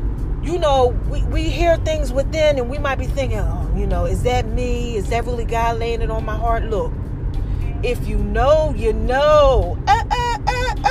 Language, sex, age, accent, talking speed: English, female, 30-49, American, 185 wpm